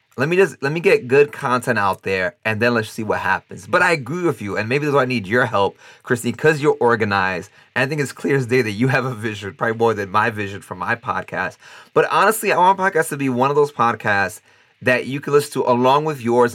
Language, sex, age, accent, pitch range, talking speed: English, male, 30-49, American, 110-135 Hz, 260 wpm